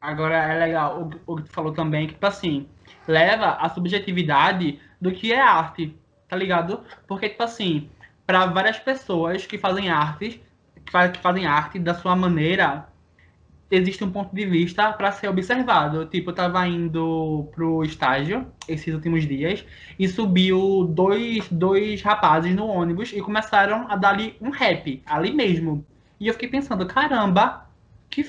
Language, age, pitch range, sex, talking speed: Portuguese, 20-39, 165-205 Hz, male, 155 wpm